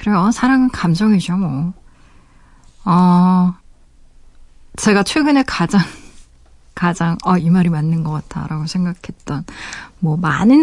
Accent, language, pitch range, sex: native, Korean, 170-205 Hz, female